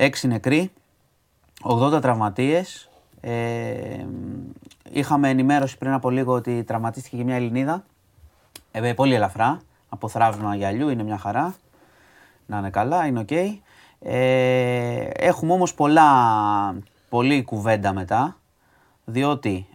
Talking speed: 120 wpm